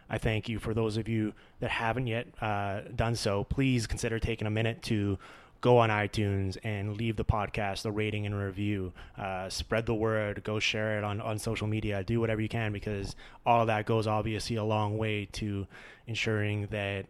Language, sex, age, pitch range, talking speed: English, male, 20-39, 105-115 Hz, 200 wpm